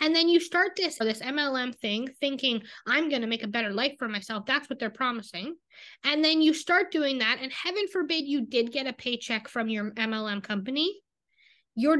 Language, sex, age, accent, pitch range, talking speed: English, female, 20-39, American, 235-295 Hz, 205 wpm